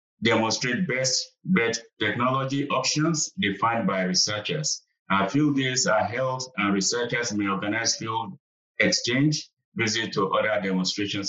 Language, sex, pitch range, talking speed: English, male, 100-125 Hz, 115 wpm